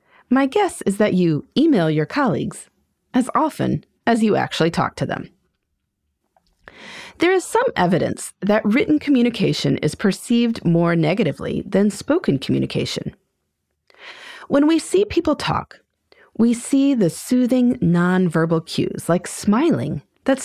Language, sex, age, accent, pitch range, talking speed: English, female, 30-49, American, 170-275 Hz, 130 wpm